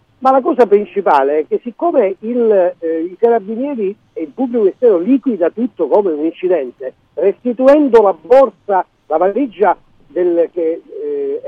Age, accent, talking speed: 50-69, native, 135 wpm